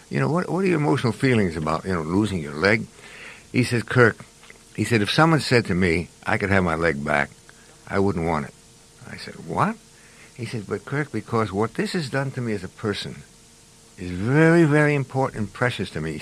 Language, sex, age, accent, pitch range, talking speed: English, male, 60-79, American, 100-145 Hz, 220 wpm